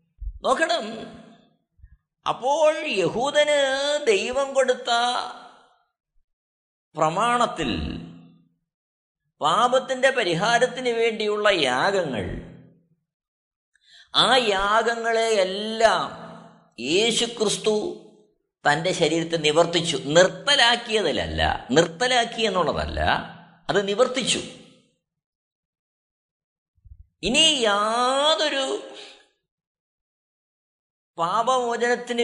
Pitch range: 155-240 Hz